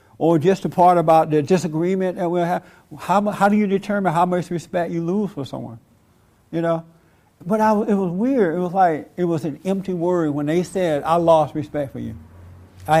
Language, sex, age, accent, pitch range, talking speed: English, male, 60-79, American, 125-180 Hz, 210 wpm